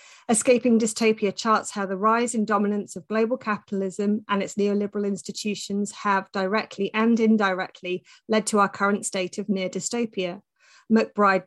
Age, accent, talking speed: 30-49, British, 145 wpm